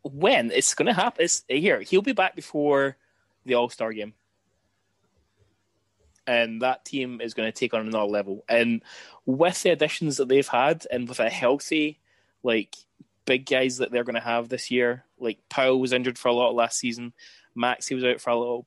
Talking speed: 205 wpm